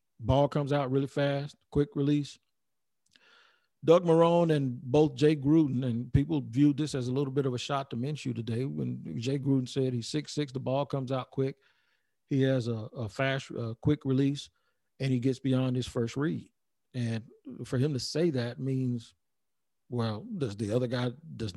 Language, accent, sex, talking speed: English, American, male, 190 wpm